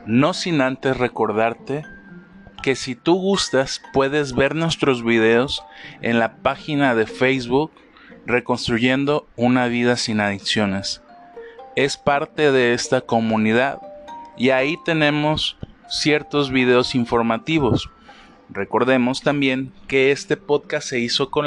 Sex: male